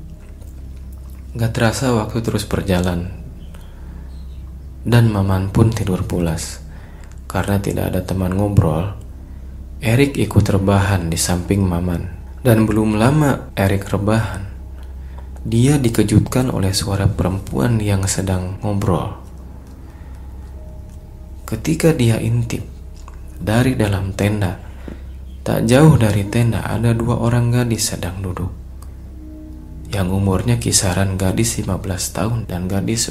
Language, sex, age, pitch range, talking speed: Indonesian, male, 30-49, 80-105 Hz, 105 wpm